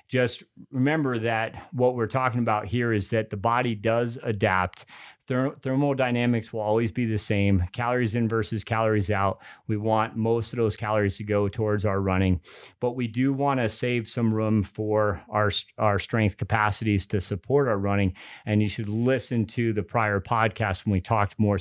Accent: American